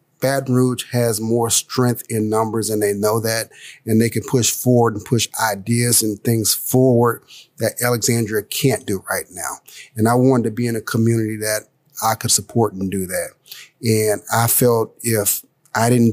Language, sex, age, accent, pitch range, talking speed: English, male, 40-59, American, 110-135 Hz, 180 wpm